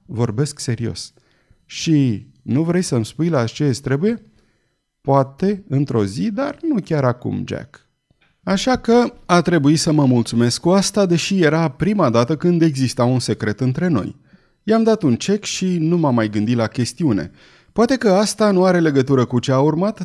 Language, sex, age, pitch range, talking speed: Romanian, male, 30-49, 120-180 Hz, 175 wpm